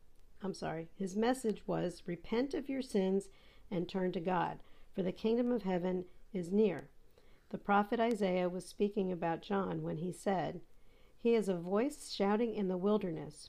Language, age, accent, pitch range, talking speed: English, 50-69, American, 170-200 Hz, 170 wpm